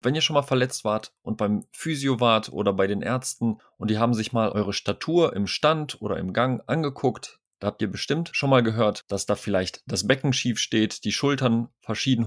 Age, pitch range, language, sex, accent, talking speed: 30-49, 105-125 Hz, German, male, German, 215 wpm